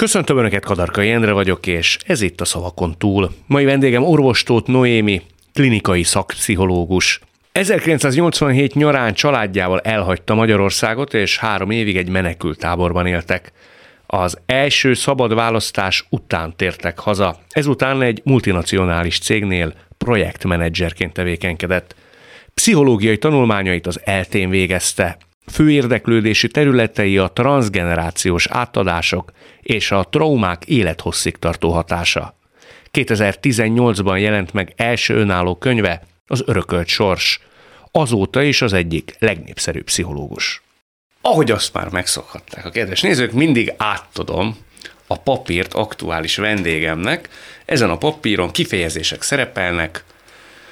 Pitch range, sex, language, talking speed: 90-120 Hz, male, Hungarian, 105 wpm